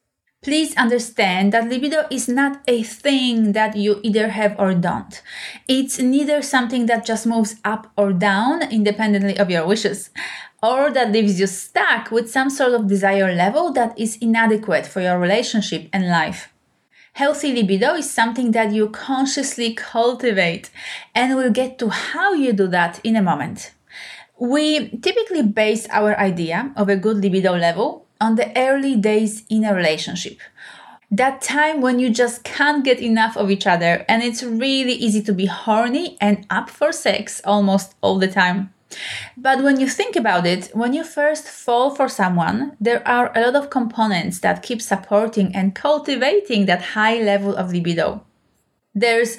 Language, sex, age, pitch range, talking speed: English, female, 30-49, 200-260 Hz, 165 wpm